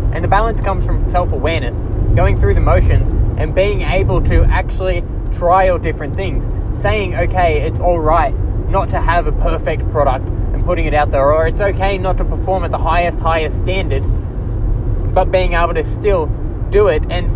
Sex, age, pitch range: male, 20-39, 95-115 Hz